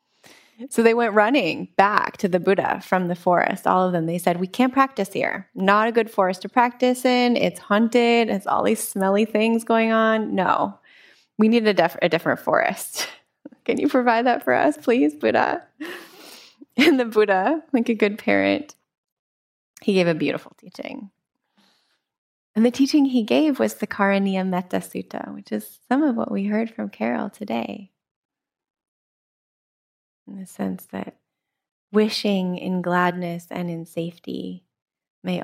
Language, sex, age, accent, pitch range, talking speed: English, female, 20-39, American, 170-230 Hz, 160 wpm